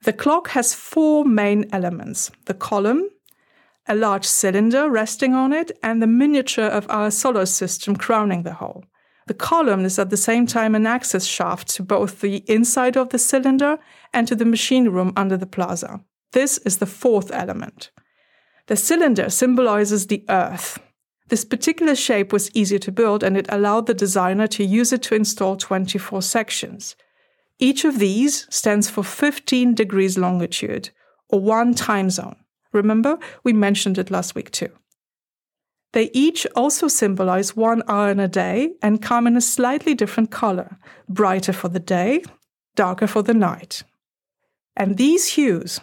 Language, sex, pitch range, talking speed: English, female, 195-255 Hz, 160 wpm